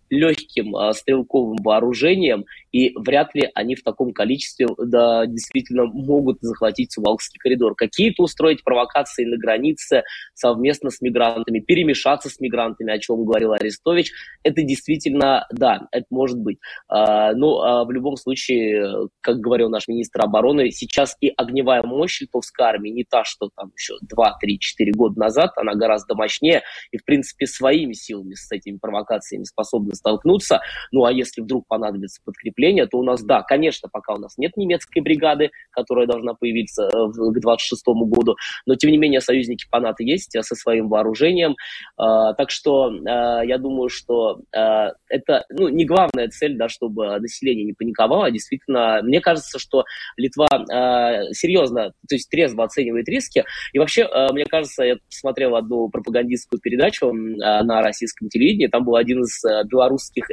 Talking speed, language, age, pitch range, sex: 150 wpm, Russian, 20-39, 115-135 Hz, male